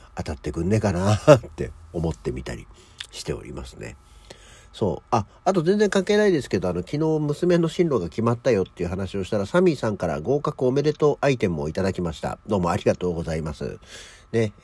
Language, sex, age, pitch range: Japanese, male, 60-79, 85-125 Hz